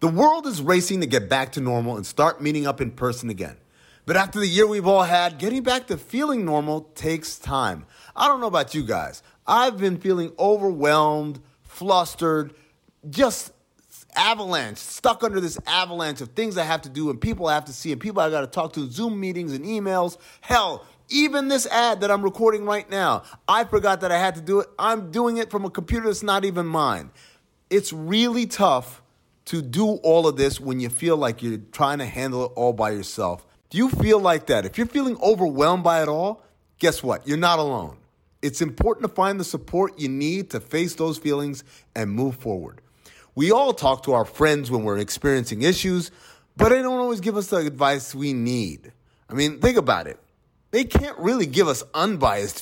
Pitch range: 135-205 Hz